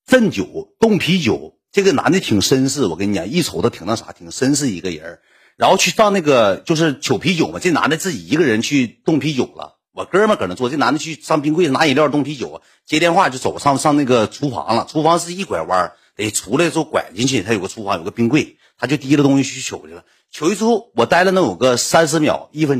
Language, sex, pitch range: Chinese, male, 105-165 Hz